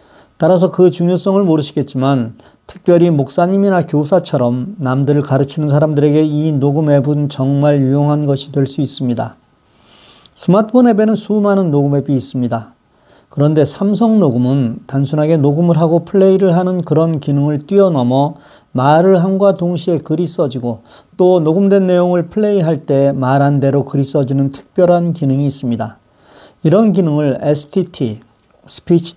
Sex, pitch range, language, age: male, 140-180 Hz, Korean, 40-59